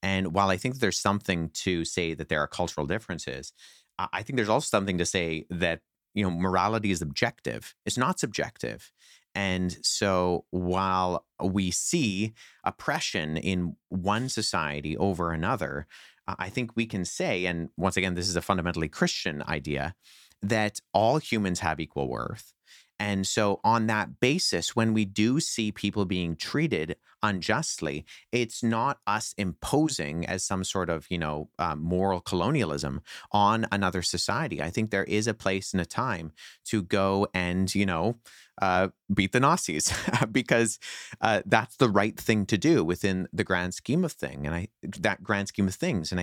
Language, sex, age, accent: English, male, 30-49, American